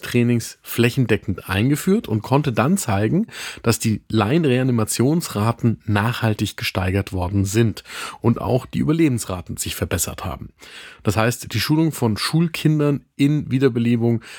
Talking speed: 120 wpm